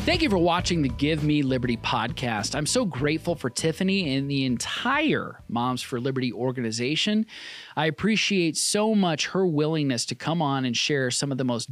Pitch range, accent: 130-175 Hz, American